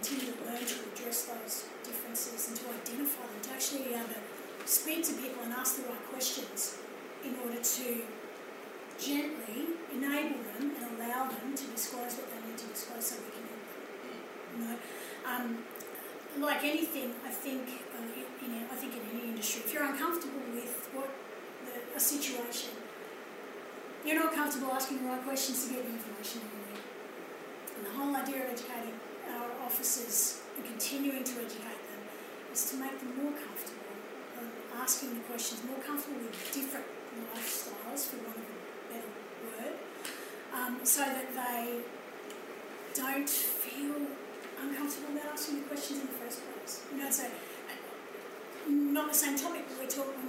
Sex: female